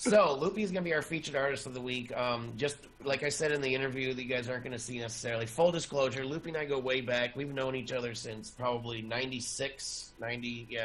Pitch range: 115-140 Hz